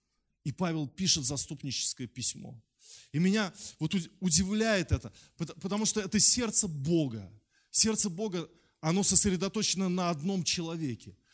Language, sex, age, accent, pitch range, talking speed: Russian, male, 20-39, native, 115-180 Hz, 115 wpm